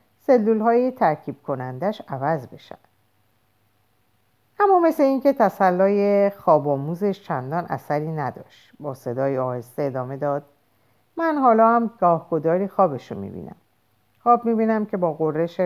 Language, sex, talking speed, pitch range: Persian, female, 125 wpm, 130-185 Hz